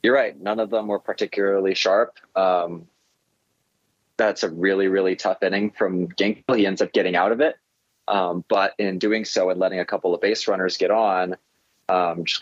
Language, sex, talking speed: English, male, 195 wpm